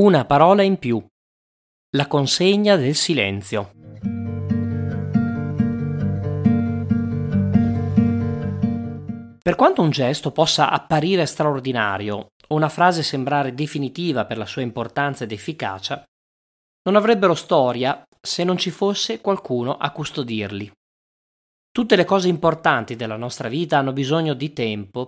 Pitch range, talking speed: 115-165 Hz, 110 wpm